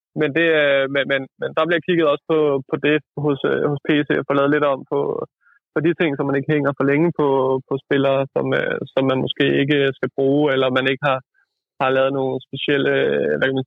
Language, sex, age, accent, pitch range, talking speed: Danish, male, 20-39, native, 135-150 Hz, 220 wpm